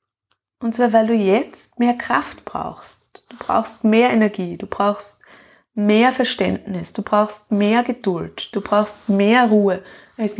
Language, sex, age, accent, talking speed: German, female, 20-39, German, 145 wpm